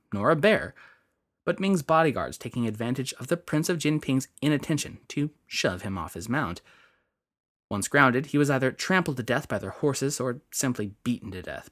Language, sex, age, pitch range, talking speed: English, male, 20-39, 125-170 Hz, 185 wpm